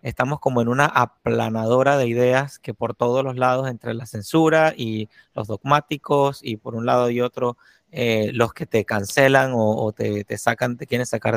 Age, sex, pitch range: 30-49, male, 120-145 Hz